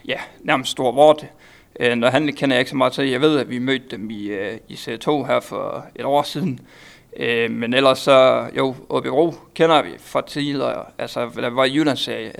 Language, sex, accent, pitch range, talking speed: Danish, male, native, 130-160 Hz, 205 wpm